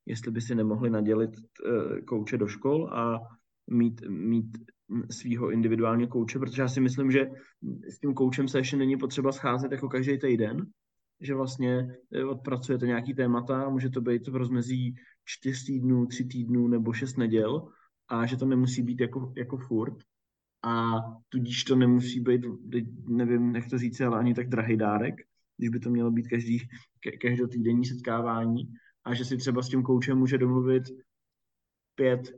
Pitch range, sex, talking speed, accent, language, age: 115-135 Hz, male, 165 wpm, native, Czech, 20-39